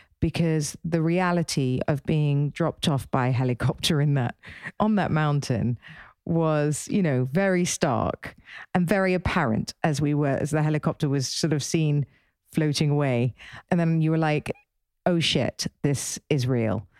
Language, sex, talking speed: English, female, 150 wpm